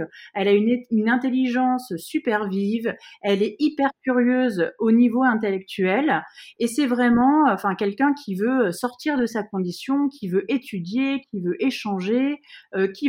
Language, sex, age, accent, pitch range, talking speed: French, female, 30-49, French, 210-270 Hz, 150 wpm